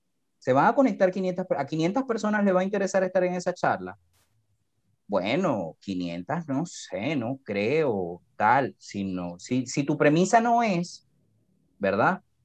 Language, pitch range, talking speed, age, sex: Spanish, 125-210 Hz, 150 wpm, 30-49, male